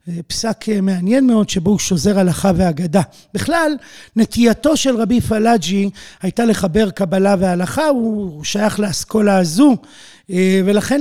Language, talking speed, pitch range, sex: Hebrew, 120 wpm, 180-220 Hz, male